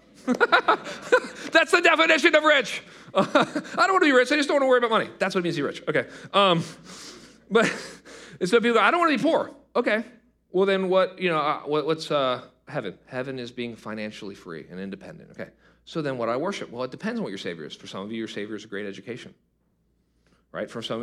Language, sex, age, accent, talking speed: English, male, 40-59, American, 235 wpm